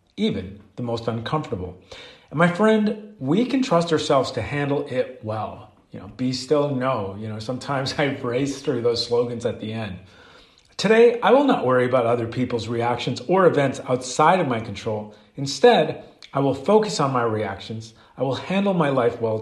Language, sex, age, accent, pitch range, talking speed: English, male, 40-59, American, 115-150 Hz, 180 wpm